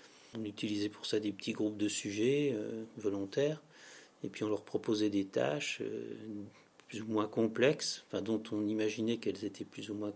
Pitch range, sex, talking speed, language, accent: 105-130 Hz, male, 190 wpm, French, French